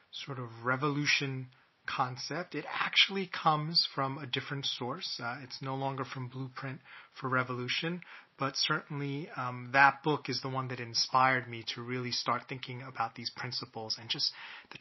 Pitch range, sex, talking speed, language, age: 120-145 Hz, male, 160 wpm, English, 30-49